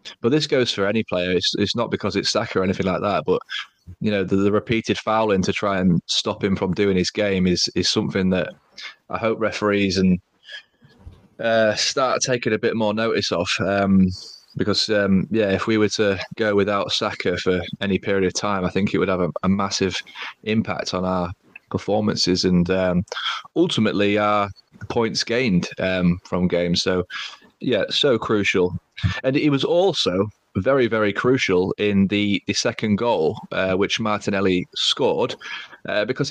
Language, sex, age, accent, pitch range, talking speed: English, male, 20-39, British, 95-115 Hz, 175 wpm